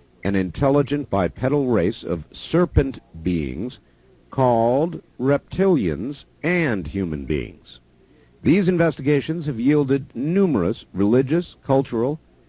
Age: 50-69